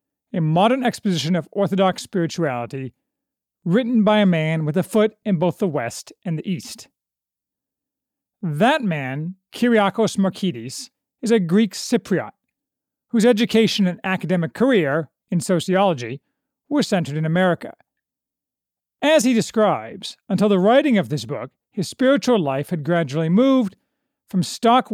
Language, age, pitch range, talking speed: English, 40-59, 170-240 Hz, 135 wpm